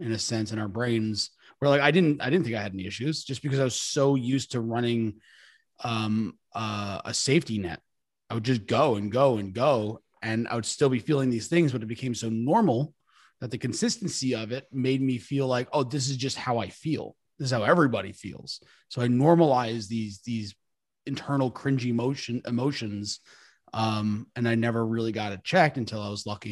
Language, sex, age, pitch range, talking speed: English, male, 30-49, 110-135 Hz, 210 wpm